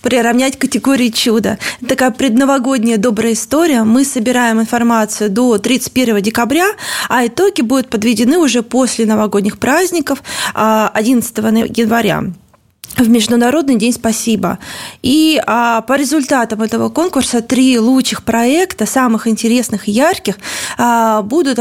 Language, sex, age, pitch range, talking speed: Russian, female, 20-39, 220-265 Hz, 110 wpm